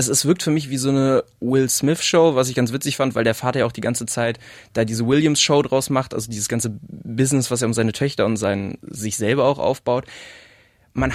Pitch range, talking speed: 115-140 Hz, 225 wpm